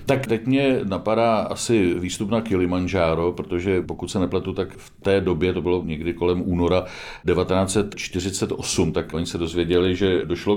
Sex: male